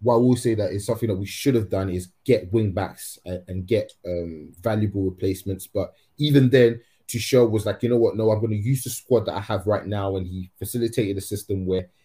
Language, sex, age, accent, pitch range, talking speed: English, male, 20-39, British, 95-115 Hz, 250 wpm